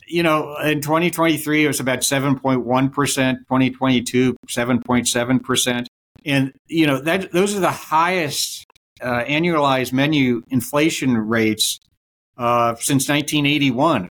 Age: 60-79